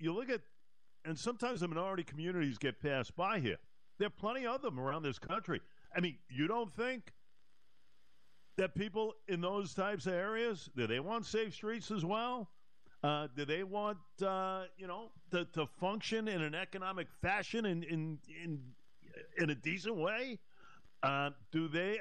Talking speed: 165 wpm